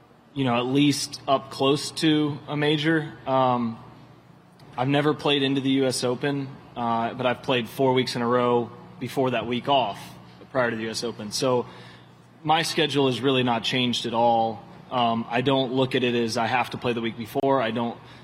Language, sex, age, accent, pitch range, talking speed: English, male, 20-39, American, 115-135 Hz, 195 wpm